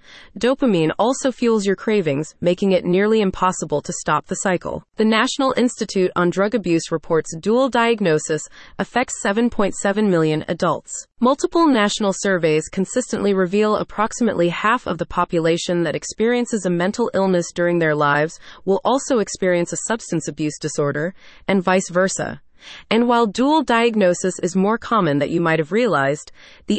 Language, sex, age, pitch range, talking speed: English, female, 30-49, 170-225 Hz, 150 wpm